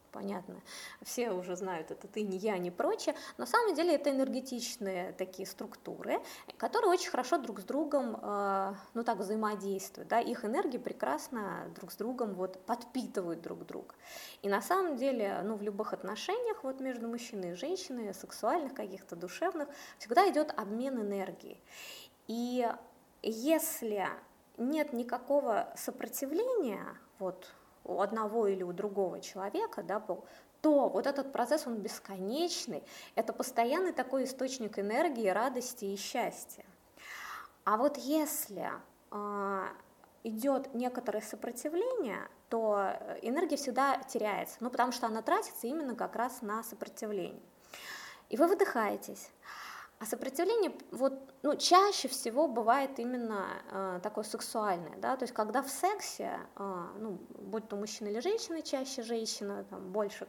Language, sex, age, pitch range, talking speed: Russian, female, 20-39, 205-280 Hz, 135 wpm